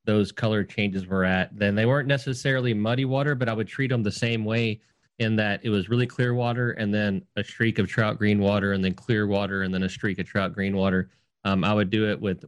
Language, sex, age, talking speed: English, male, 30-49, 250 wpm